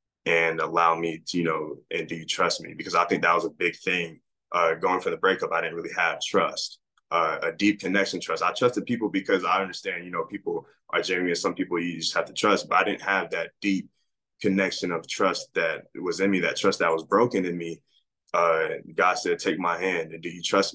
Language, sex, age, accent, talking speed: English, male, 20-39, American, 240 wpm